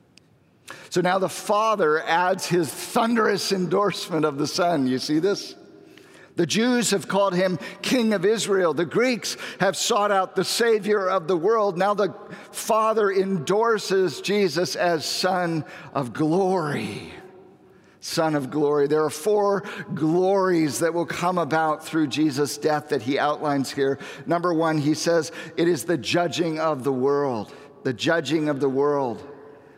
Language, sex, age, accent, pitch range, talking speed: English, male, 50-69, American, 145-190 Hz, 150 wpm